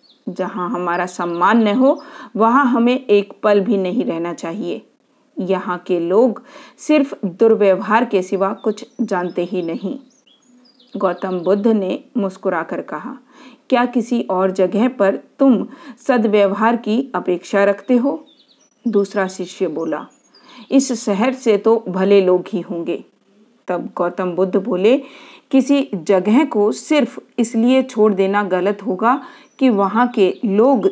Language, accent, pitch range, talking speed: Hindi, native, 190-255 Hz, 130 wpm